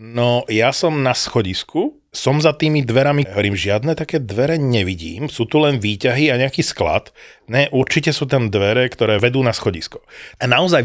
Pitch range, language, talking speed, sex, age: 100-135 Hz, Slovak, 175 wpm, male, 30-49